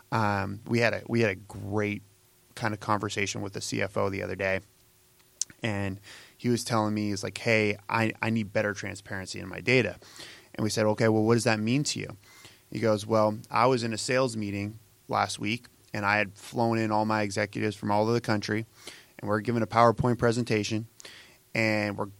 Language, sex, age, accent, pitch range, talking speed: English, male, 20-39, American, 105-120 Hz, 205 wpm